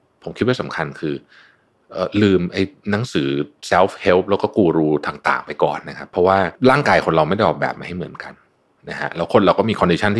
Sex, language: male, Thai